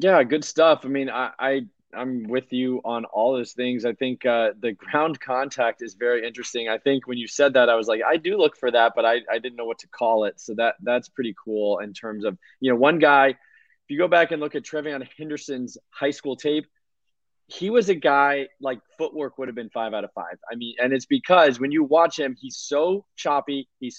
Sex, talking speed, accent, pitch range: male, 240 wpm, American, 120-150 Hz